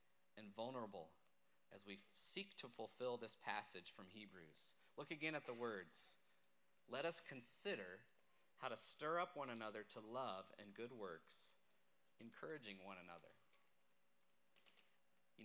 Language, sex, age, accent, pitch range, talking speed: English, male, 40-59, American, 105-165 Hz, 130 wpm